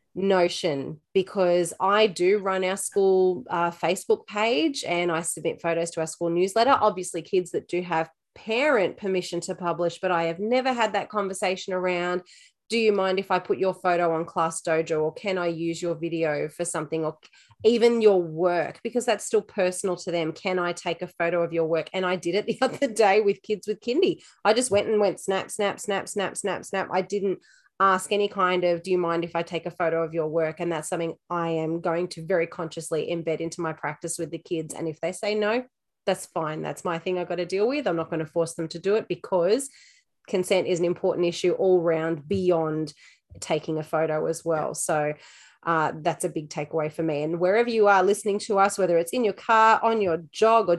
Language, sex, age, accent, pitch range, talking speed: English, female, 30-49, Australian, 165-195 Hz, 225 wpm